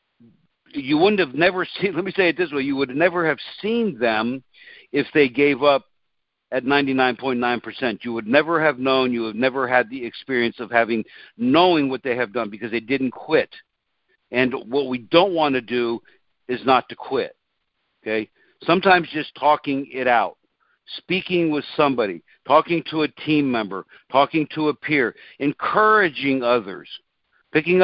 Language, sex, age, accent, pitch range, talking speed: English, male, 60-79, American, 125-155 Hz, 170 wpm